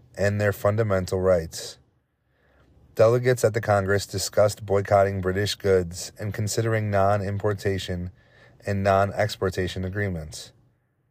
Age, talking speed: 30-49, 95 wpm